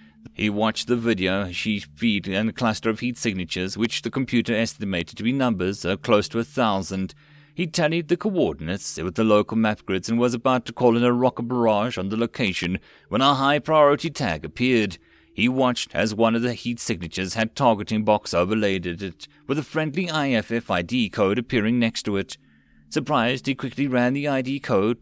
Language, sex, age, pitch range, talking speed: English, male, 30-49, 100-135 Hz, 195 wpm